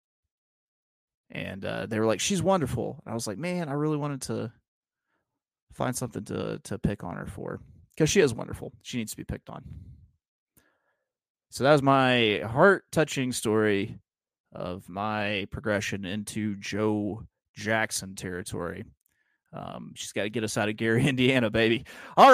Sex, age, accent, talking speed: male, 30-49, American, 160 wpm